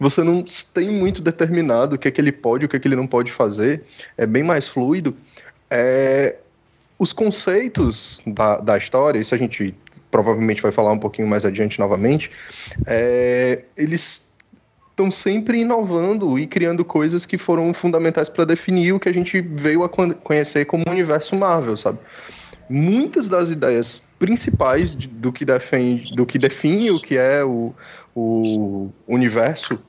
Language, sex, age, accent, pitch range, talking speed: Portuguese, male, 20-39, Brazilian, 115-180 Hz, 160 wpm